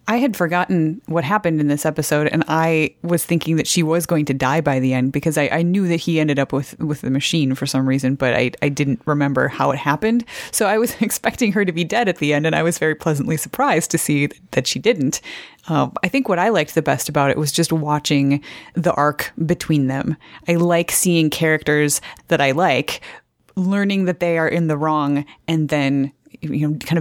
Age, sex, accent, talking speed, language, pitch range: 30-49, female, American, 225 wpm, English, 140-170 Hz